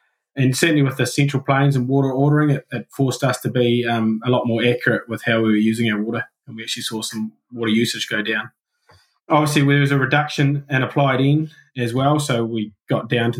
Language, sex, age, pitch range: English, male, 20-39, 115-140 Hz